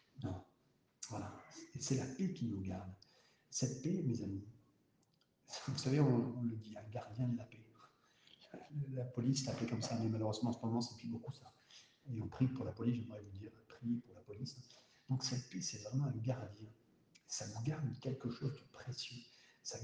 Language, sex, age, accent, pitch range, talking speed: French, male, 60-79, French, 115-135 Hz, 205 wpm